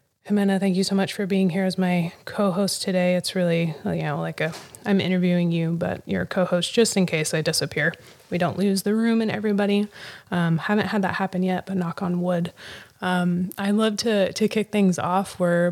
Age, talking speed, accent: 20-39, 220 wpm, American